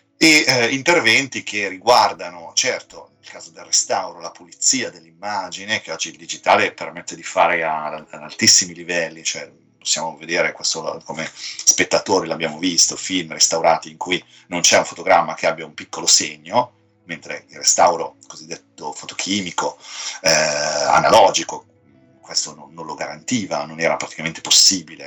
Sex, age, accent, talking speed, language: male, 30-49, native, 145 wpm, Italian